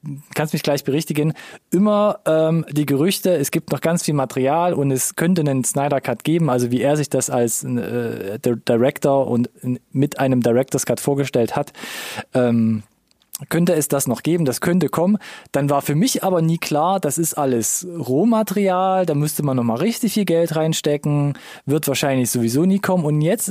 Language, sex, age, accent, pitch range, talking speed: German, male, 20-39, German, 130-170 Hz, 180 wpm